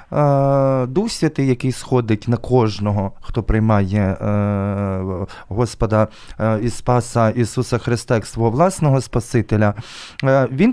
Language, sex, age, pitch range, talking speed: Ukrainian, male, 20-39, 110-135 Hz, 100 wpm